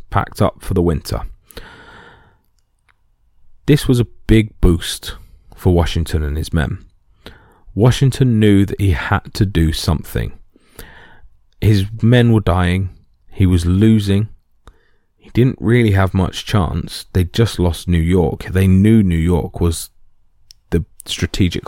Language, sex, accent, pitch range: English, male, British, 85-105 Hz